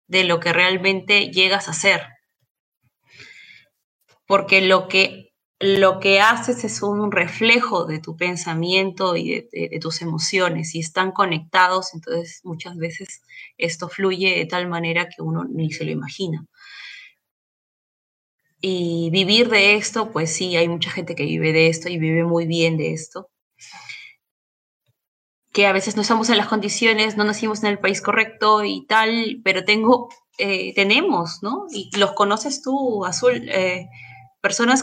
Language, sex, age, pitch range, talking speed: Spanish, female, 20-39, 170-220 Hz, 155 wpm